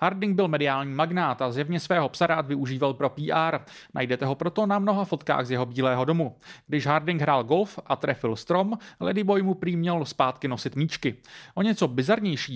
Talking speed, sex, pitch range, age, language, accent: 175 wpm, male, 140-185 Hz, 30-49, Czech, native